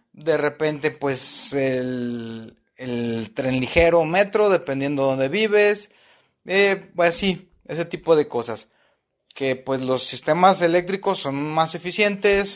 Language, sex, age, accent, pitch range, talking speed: Spanish, male, 30-49, Mexican, 135-190 Hz, 130 wpm